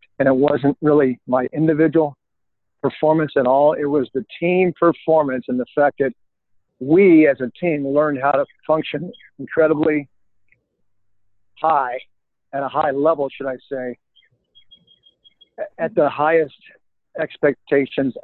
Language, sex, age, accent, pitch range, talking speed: English, male, 50-69, American, 135-150 Hz, 130 wpm